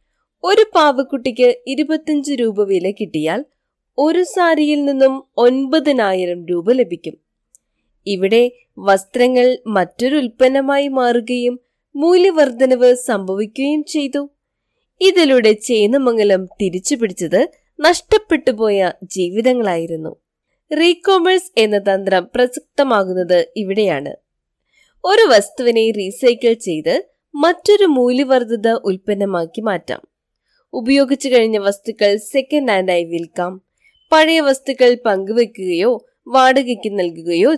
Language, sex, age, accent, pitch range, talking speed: Malayalam, female, 20-39, native, 210-290 Hz, 80 wpm